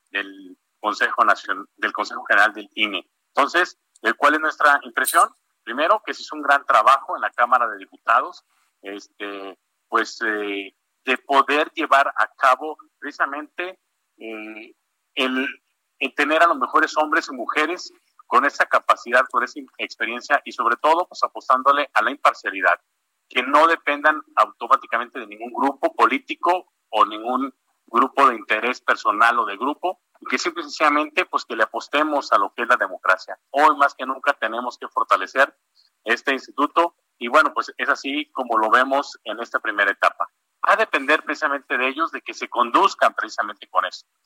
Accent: Mexican